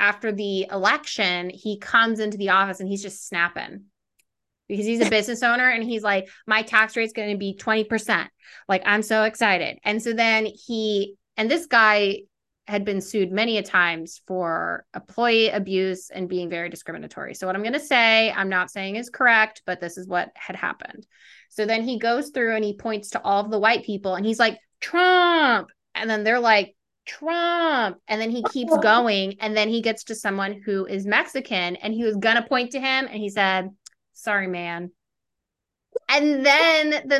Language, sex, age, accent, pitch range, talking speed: English, female, 20-39, American, 200-255 Hz, 195 wpm